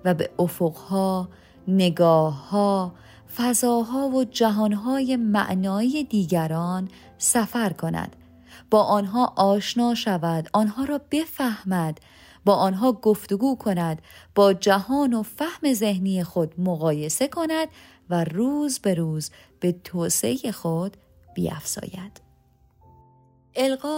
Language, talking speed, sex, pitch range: Persian, 100 wpm, female, 175-245 Hz